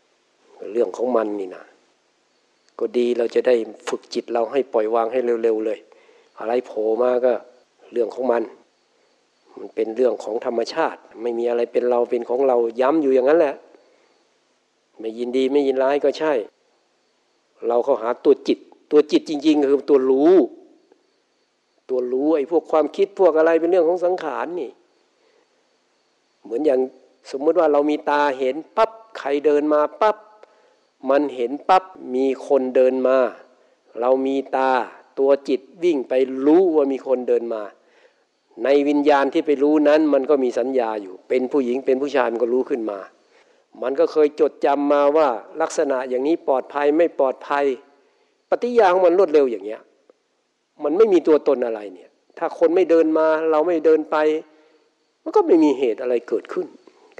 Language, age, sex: Thai, 60-79, male